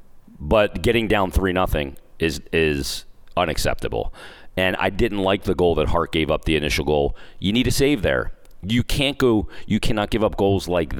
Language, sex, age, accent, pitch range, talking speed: English, male, 40-59, American, 80-100 Hz, 190 wpm